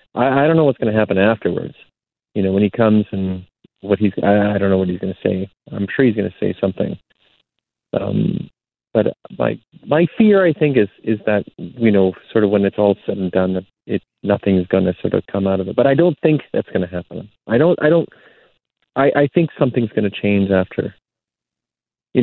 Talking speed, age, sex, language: 225 wpm, 30-49, male, English